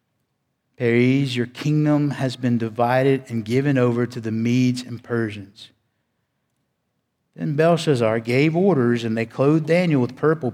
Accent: American